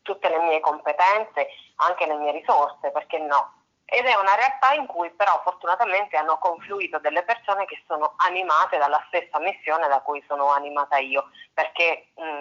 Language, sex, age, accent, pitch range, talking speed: Italian, female, 30-49, native, 145-175 Hz, 170 wpm